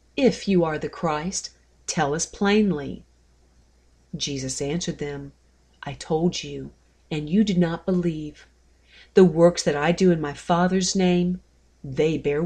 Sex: female